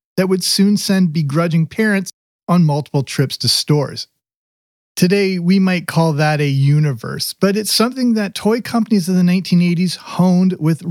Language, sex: English, male